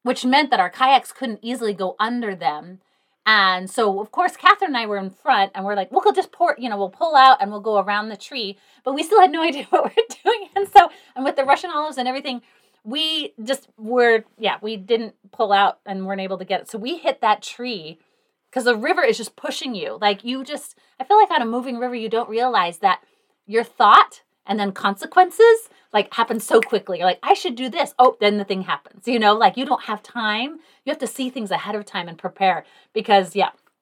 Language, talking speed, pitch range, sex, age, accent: English, 240 wpm, 205-285 Hz, female, 30-49, American